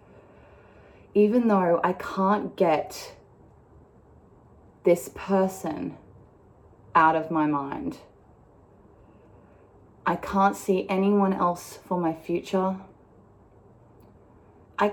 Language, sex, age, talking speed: English, female, 20-39, 80 wpm